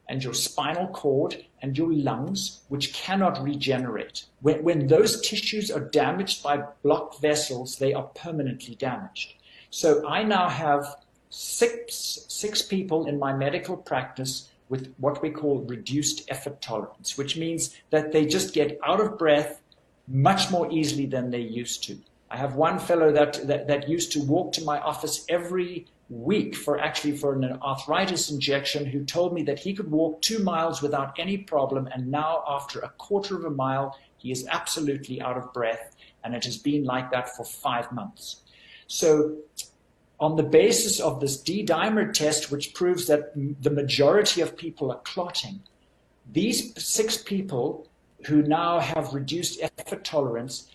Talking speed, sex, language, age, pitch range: 165 wpm, male, Italian, 50-69, 140-170 Hz